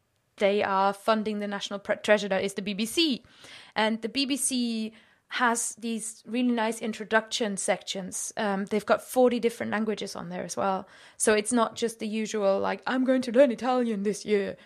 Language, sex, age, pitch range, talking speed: English, female, 20-39, 205-240 Hz, 170 wpm